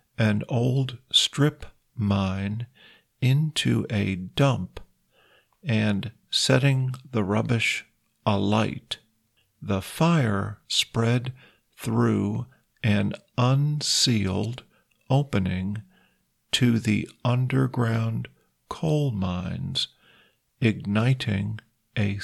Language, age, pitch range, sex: Thai, 50-69, 105-125 Hz, male